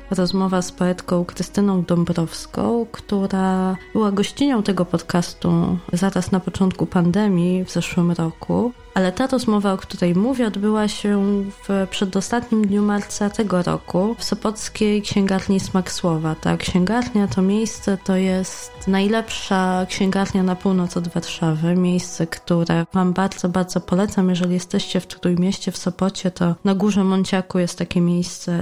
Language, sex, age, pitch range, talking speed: Polish, female, 20-39, 175-205 Hz, 140 wpm